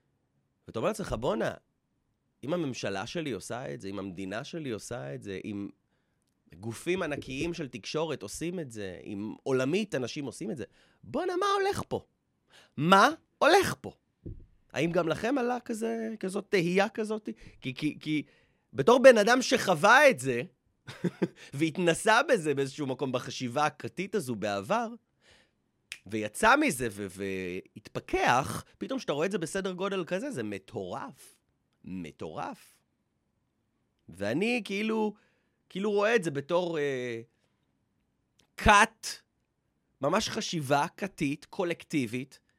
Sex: male